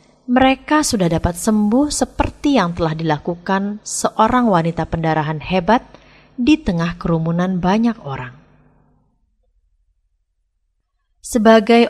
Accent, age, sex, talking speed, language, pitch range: native, 30-49, female, 90 wpm, Indonesian, 150-225 Hz